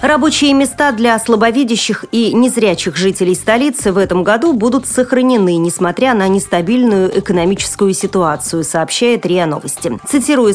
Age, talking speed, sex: 30-49, 125 wpm, female